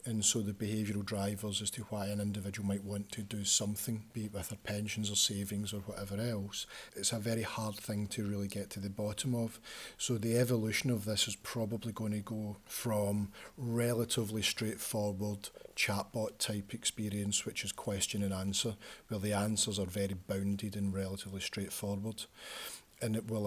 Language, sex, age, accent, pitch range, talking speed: English, male, 40-59, British, 100-110 Hz, 180 wpm